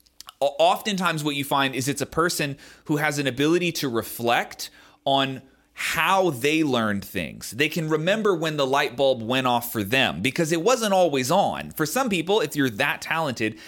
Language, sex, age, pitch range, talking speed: English, male, 30-49, 125-170 Hz, 185 wpm